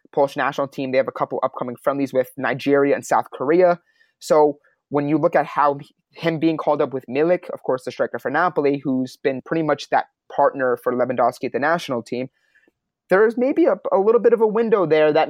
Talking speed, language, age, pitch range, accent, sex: 215 wpm, English, 30-49, 135-160 Hz, American, male